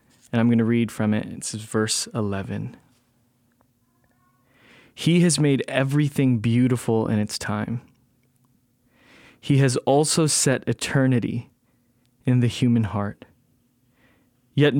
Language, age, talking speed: English, 20-39, 120 wpm